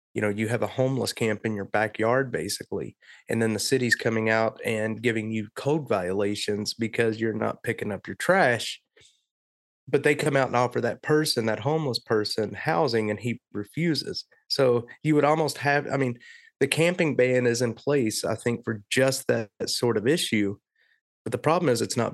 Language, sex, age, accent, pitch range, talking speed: English, male, 30-49, American, 105-130 Hz, 190 wpm